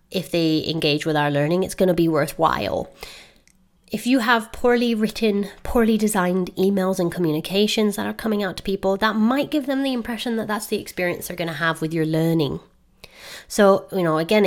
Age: 30-49